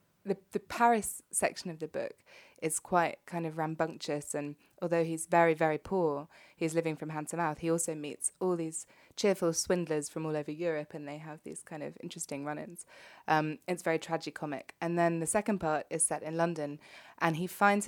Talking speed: 200 wpm